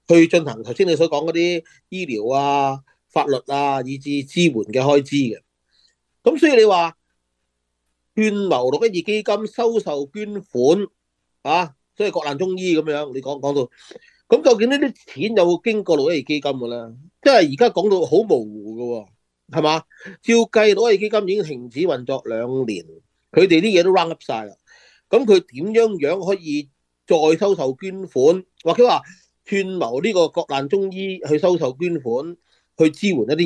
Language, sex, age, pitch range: Chinese, male, 30-49, 135-205 Hz